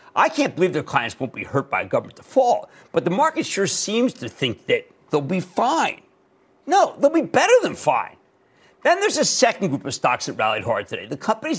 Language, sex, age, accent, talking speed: English, male, 50-69, American, 215 wpm